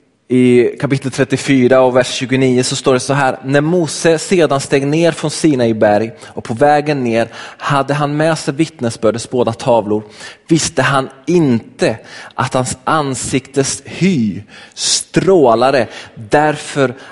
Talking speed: 140 wpm